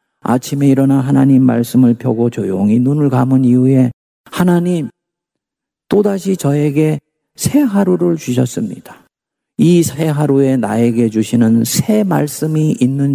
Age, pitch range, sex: 50-69, 110-155 Hz, male